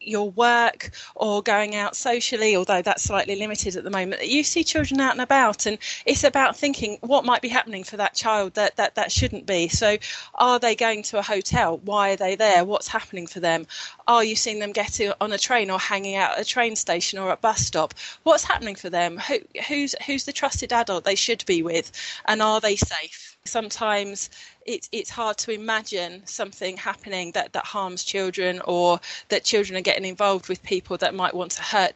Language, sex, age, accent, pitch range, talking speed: English, female, 30-49, British, 180-215 Hz, 205 wpm